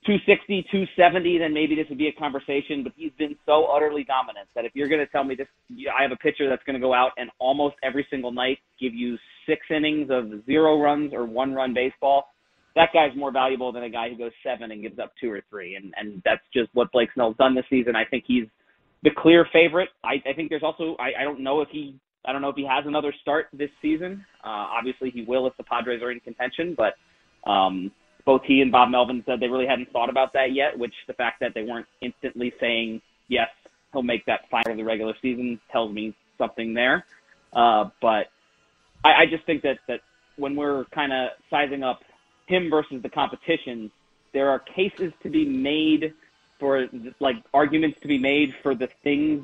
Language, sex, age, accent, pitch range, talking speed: English, male, 30-49, American, 125-150 Hz, 220 wpm